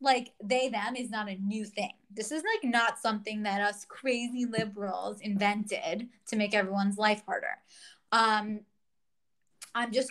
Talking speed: 155 wpm